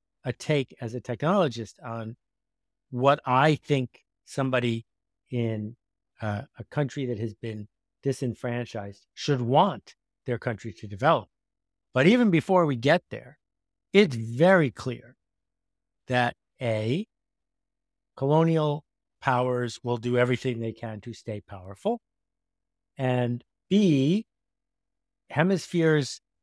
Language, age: English, 60-79